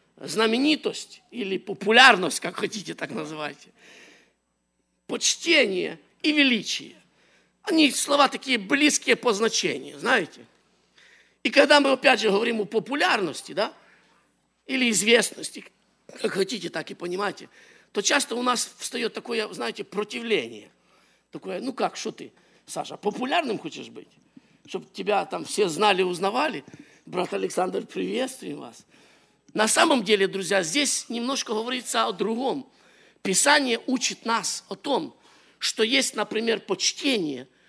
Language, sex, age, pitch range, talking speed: English, male, 50-69, 215-285 Hz, 125 wpm